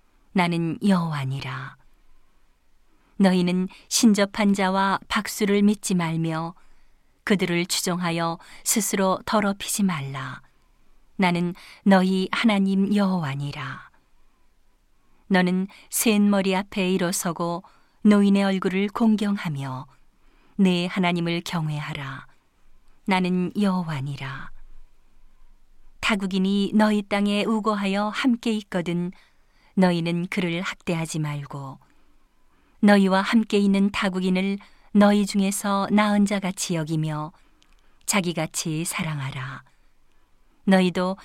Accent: native